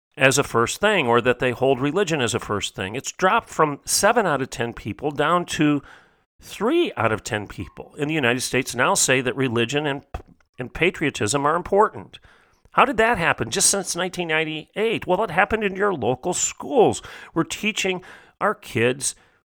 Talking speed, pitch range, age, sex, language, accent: 180 wpm, 110-160 Hz, 40-59, male, English, American